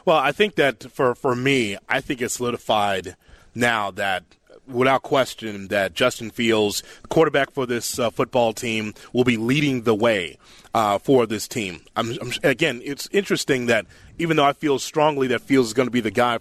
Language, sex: English, male